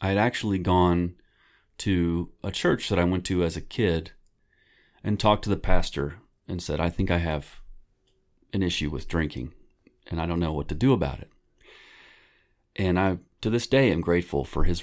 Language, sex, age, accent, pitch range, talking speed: English, male, 40-59, American, 80-100 Hz, 190 wpm